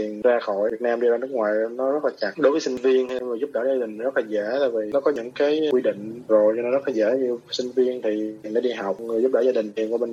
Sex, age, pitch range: male, 20-39, 110-130 Hz